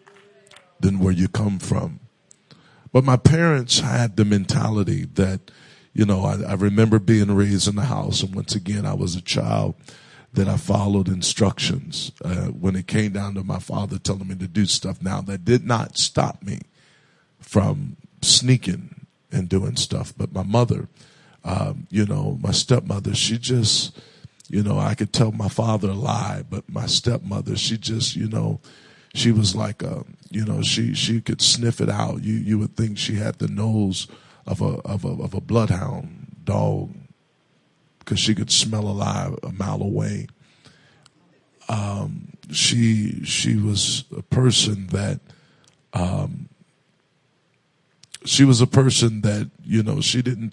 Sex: male